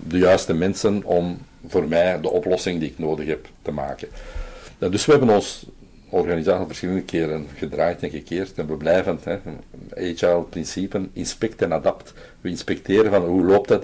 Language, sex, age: Dutch, male, 50-69